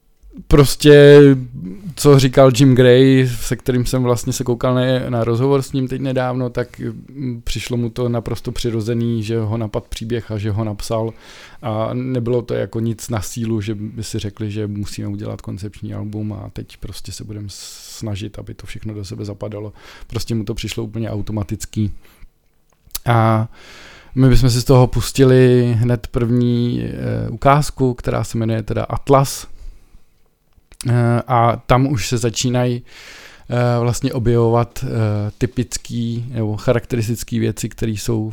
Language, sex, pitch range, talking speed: Czech, male, 110-125 Hz, 145 wpm